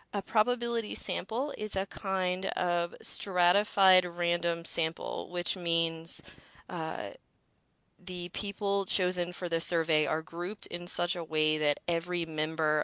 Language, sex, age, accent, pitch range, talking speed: English, female, 30-49, American, 145-170 Hz, 130 wpm